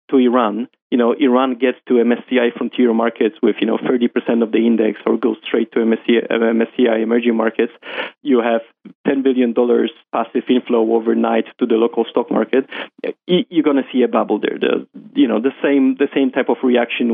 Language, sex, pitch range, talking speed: English, male, 115-135 Hz, 175 wpm